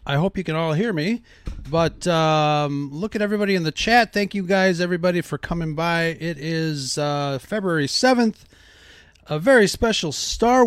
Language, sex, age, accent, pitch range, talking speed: English, male, 30-49, American, 150-195 Hz, 175 wpm